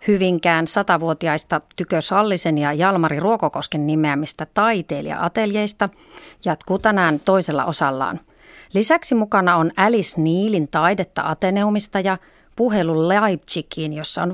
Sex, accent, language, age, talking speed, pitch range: female, native, Finnish, 40-59, 100 wpm, 160-205 Hz